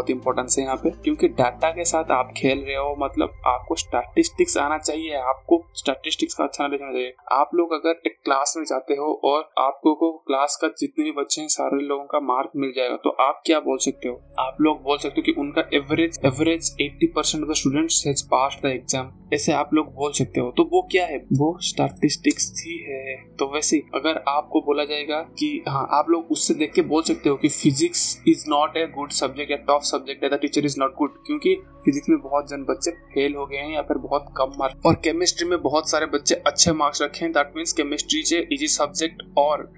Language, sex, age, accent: Hindi, male, 20-39, native